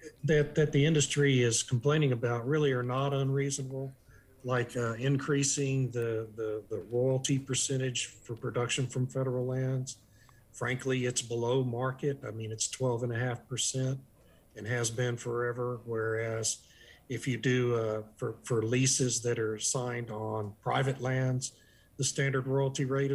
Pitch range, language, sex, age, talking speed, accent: 115-135 Hz, English, male, 50-69, 135 wpm, American